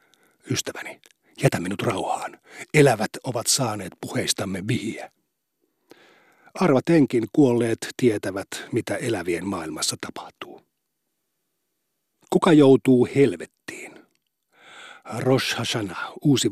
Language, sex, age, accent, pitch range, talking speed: Finnish, male, 50-69, native, 125-145 Hz, 80 wpm